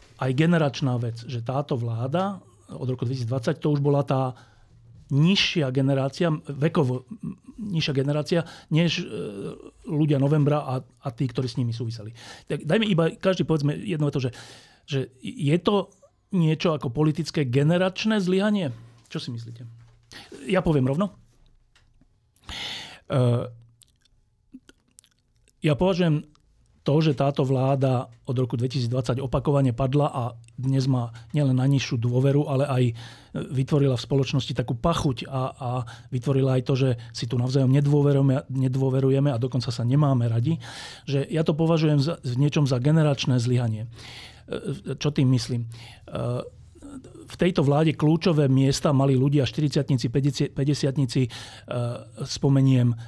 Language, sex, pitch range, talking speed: Slovak, male, 125-150 Hz, 130 wpm